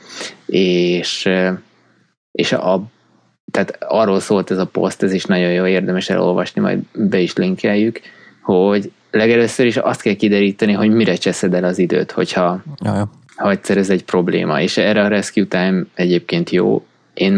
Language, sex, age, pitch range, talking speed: Hungarian, male, 20-39, 90-105 Hz, 155 wpm